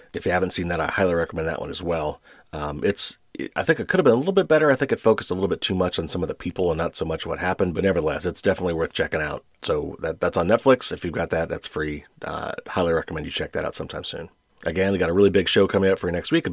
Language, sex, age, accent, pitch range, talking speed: English, male, 40-59, American, 85-115 Hz, 310 wpm